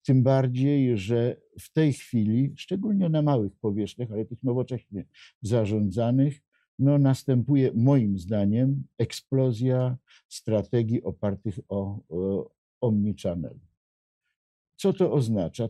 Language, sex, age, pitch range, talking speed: Polish, male, 50-69, 105-130 Hz, 105 wpm